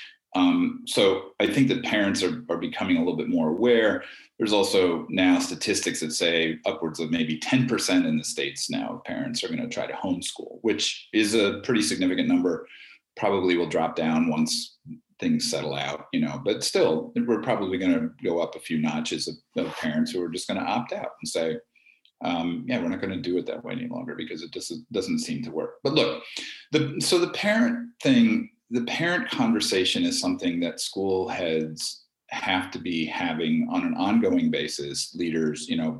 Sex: male